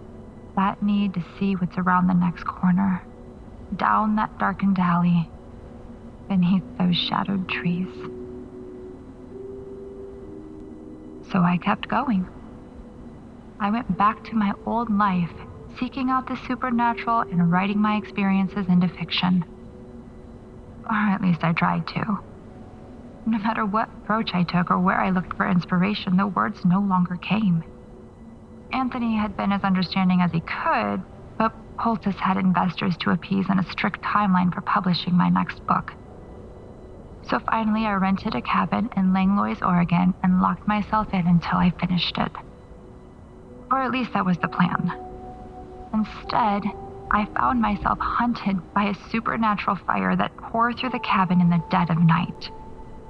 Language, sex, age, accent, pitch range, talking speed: English, female, 30-49, American, 170-205 Hz, 145 wpm